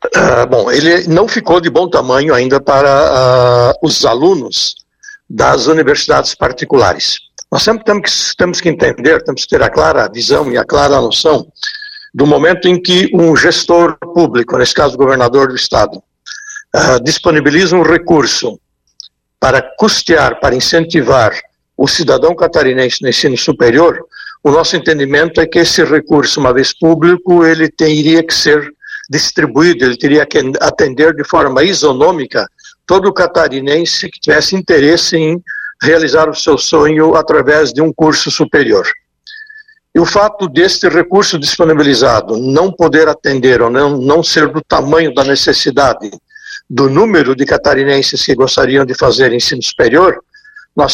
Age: 60-79